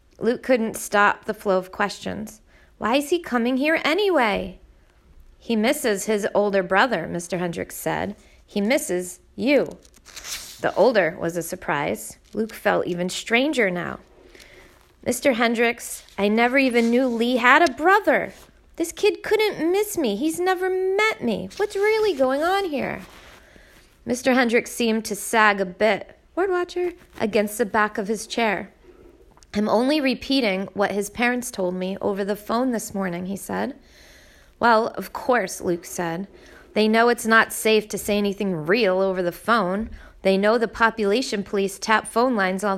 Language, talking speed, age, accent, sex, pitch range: English, 160 wpm, 30-49, American, female, 205-265 Hz